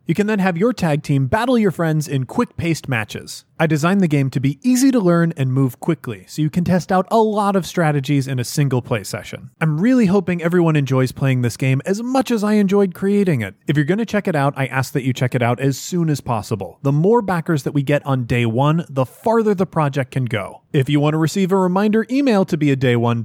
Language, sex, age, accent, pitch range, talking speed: English, male, 30-49, American, 135-205 Hz, 255 wpm